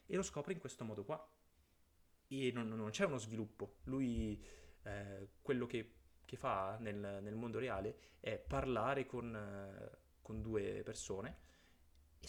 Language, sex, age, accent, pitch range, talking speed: Italian, male, 20-39, native, 95-125 Hz, 145 wpm